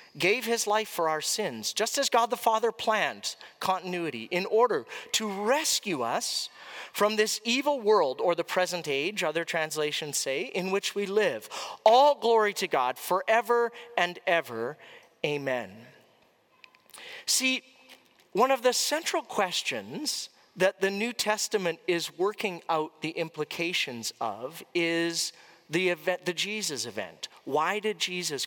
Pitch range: 155-220 Hz